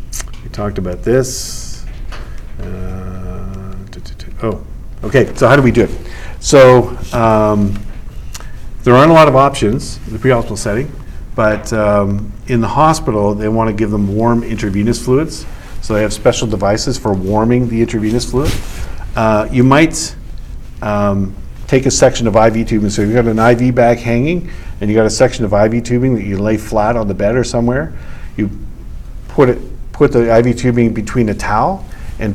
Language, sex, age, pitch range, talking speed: English, male, 50-69, 100-125 Hz, 180 wpm